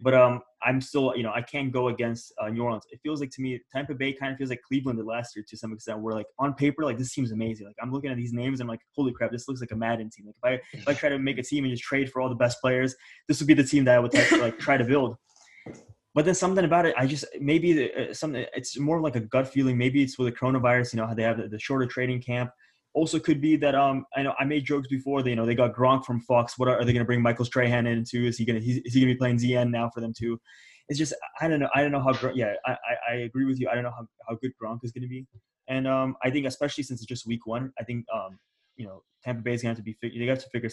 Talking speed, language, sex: 315 wpm, English, male